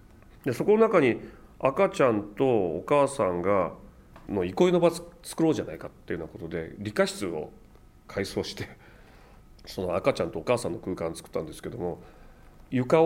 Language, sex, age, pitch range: Japanese, male, 40-59, 105-160 Hz